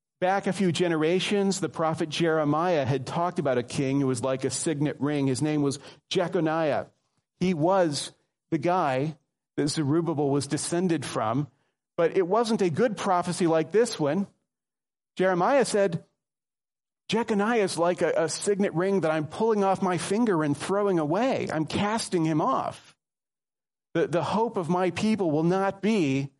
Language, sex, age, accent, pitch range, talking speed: English, male, 40-59, American, 130-175 Hz, 160 wpm